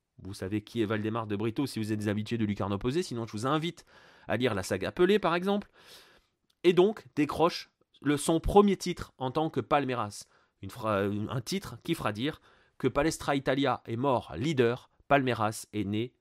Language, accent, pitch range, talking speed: French, French, 115-165 Hz, 185 wpm